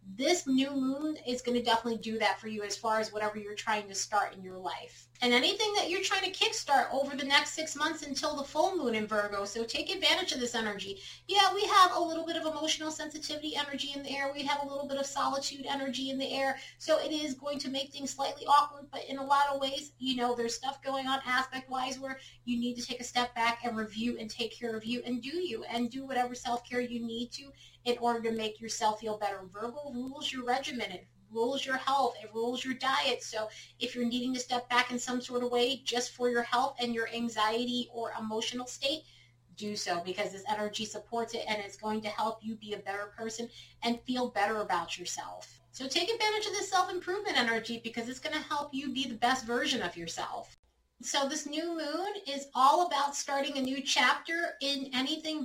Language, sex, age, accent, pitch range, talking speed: English, female, 30-49, American, 225-285 Hz, 230 wpm